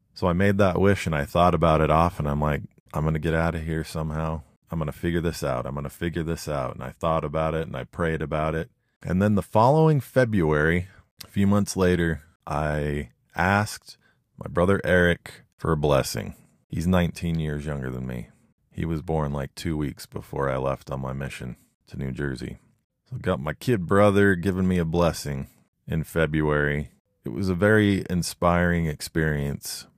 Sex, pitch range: male, 70-90 Hz